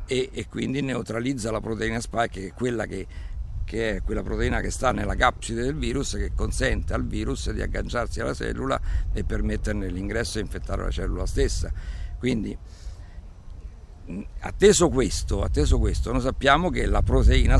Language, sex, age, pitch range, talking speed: Italian, male, 50-69, 95-125 Hz, 155 wpm